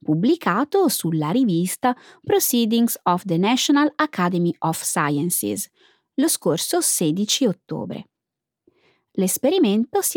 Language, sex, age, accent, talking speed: Italian, female, 20-39, native, 95 wpm